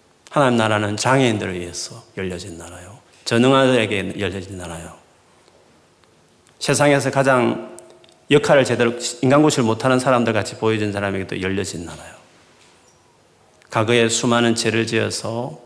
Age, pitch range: 40-59, 100-130 Hz